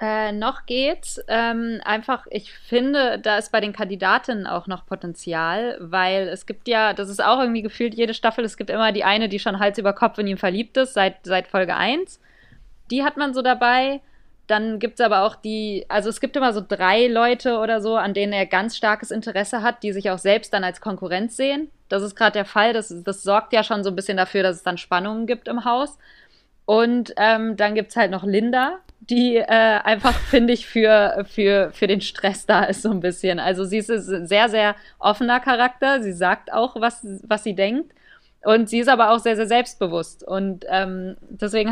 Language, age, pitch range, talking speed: German, 20-39, 195-235 Hz, 215 wpm